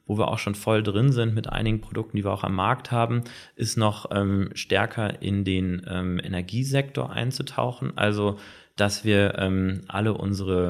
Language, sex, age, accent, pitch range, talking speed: German, male, 30-49, German, 95-110 Hz, 175 wpm